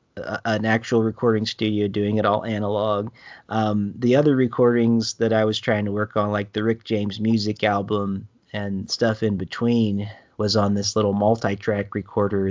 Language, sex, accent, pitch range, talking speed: English, male, American, 105-115 Hz, 170 wpm